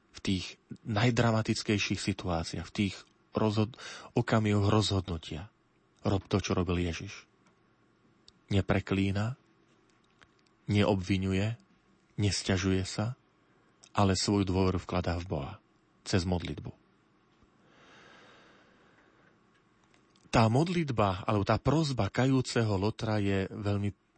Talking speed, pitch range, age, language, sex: 85 wpm, 95-115 Hz, 40-59, Slovak, male